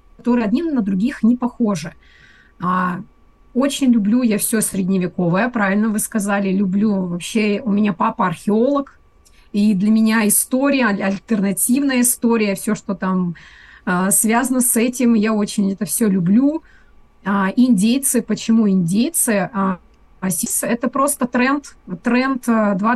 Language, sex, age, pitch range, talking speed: Russian, female, 30-49, 195-235 Hz, 115 wpm